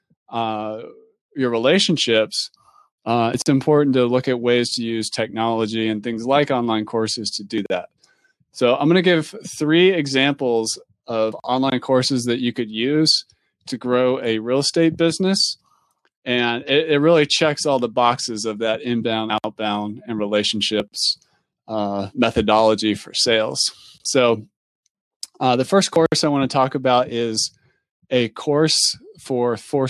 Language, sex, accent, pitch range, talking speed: English, male, American, 115-145 Hz, 150 wpm